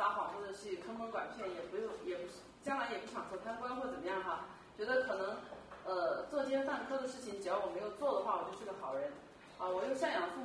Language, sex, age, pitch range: Chinese, female, 30-49, 195-300 Hz